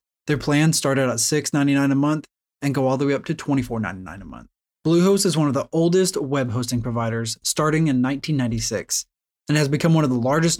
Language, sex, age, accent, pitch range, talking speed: English, male, 20-39, American, 125-160 Hz, 210 wpm